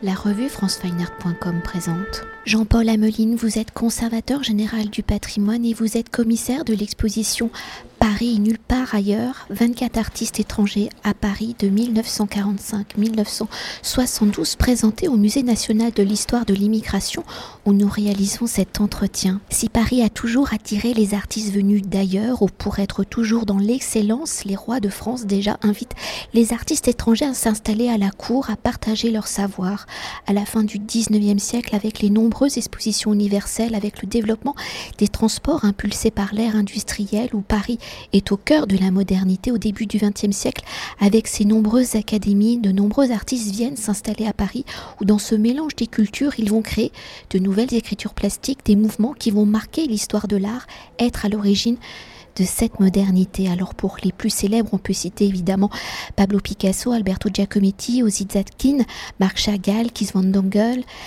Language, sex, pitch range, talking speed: French, female, 200-230 Hz, 165 wpm